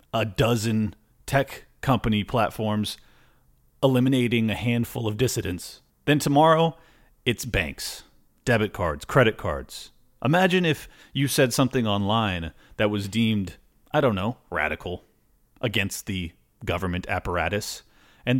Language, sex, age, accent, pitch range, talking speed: English, male, 30-49, American, 105-145 Hz, 115 wpm